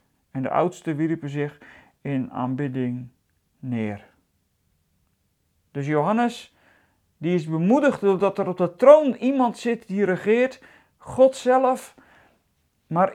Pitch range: 165-255 Hz